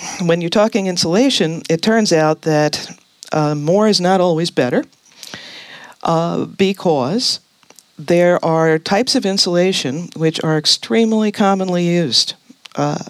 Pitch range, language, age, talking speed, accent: 140-175 Hz, English, 50-69, 120 wpm, American